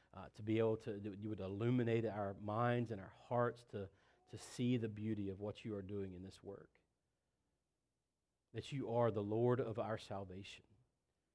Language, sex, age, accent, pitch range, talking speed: English, male, 40-59, American, 105-130 Hz, 180 wpm